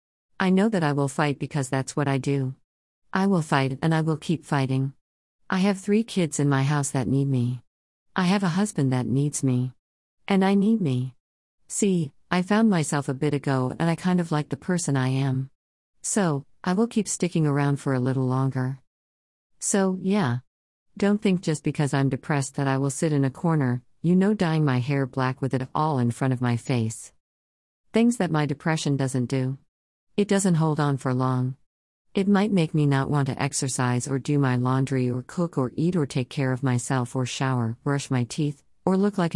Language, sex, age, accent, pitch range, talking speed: English, female, 50-69, American, 125-160 Hz, 205 wpm